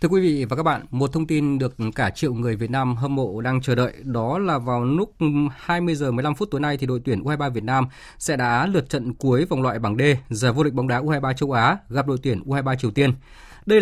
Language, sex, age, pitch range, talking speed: Vietnamese, male, 20-39, 125-160 Hz, 250 wpm